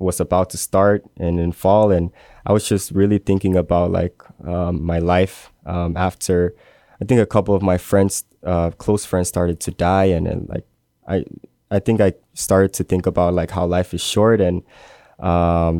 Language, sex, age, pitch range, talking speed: English, male, 20-39, 90-100 Hz, 195 wpm